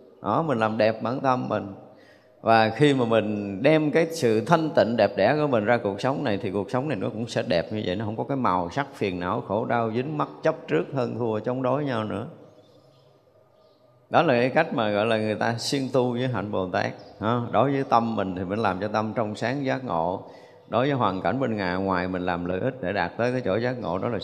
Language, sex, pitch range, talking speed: Vietnamese, male, 100-135 Hz, 250 wpm